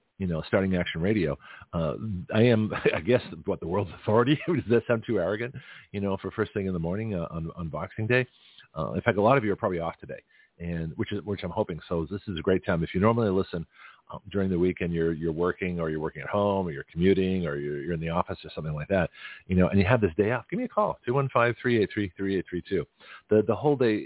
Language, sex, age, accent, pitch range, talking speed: English, male, 40-59, American, 85-110 Hz, 275 wpm